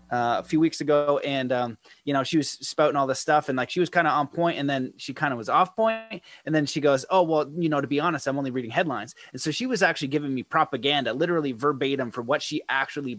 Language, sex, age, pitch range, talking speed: English, male, 30-49, 130-165 Hz, 275 wpm